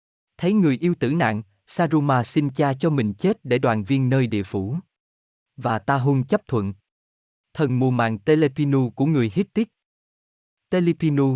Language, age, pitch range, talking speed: Vietnamese, 20-39, 110-155 Hz, 160 wpm